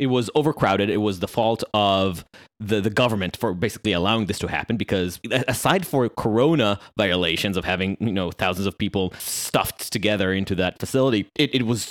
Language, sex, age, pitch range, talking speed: English, male, 30-49, 100-145 Hz, 185 wpm